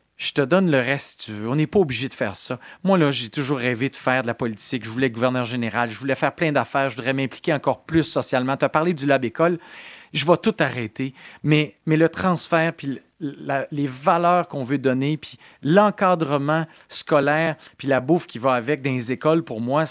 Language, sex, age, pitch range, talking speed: French, male, 40-59, 130-175 Hz, 230 wpm